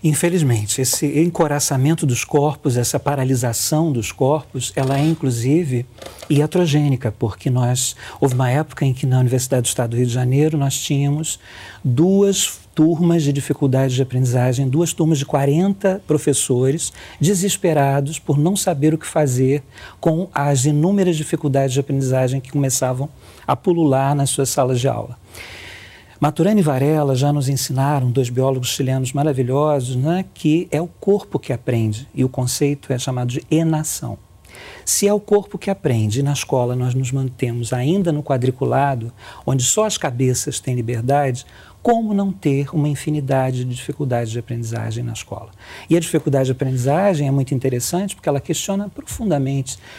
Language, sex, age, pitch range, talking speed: Portuguese, male, 50-69, 125-155 Hz, 155 wpm